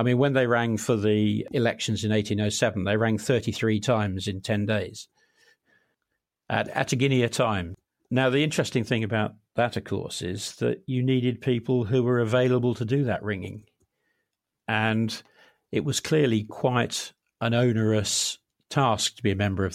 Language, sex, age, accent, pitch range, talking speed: English, male, 50-69, British, 105-120 Hz, 160 wpm